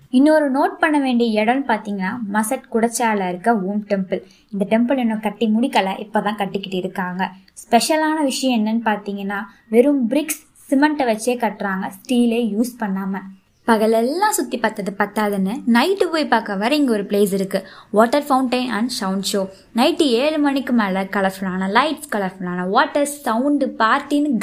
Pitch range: 210-275 Hz